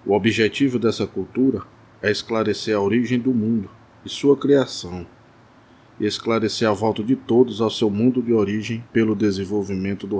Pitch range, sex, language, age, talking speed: 110-125 Hz, male, Portuguese, 20-39, 160 wpm